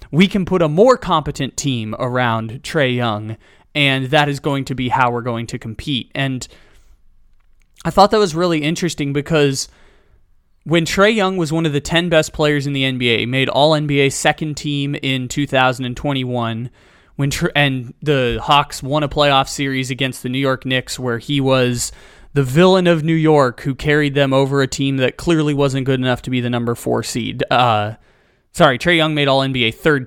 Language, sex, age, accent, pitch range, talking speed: English, male, 20-39, American, 130-155 Hz, 190 wpm